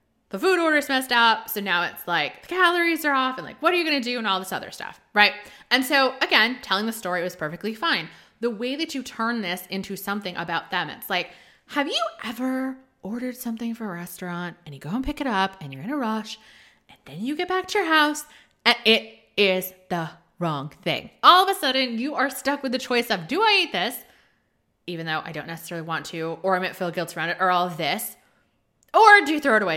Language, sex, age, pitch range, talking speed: English, female, 20-39, 185-275 Hz, 245 wpm